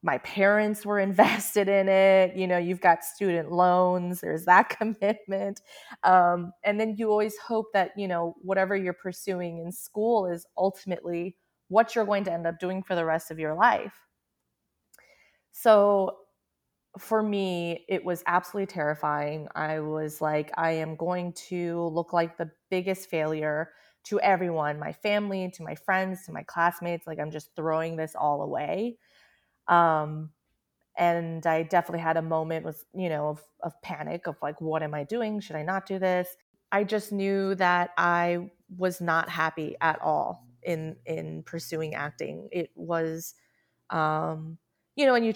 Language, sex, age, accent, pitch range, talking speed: English, female, 30-49, American, 165-195 Hz, 165 wpm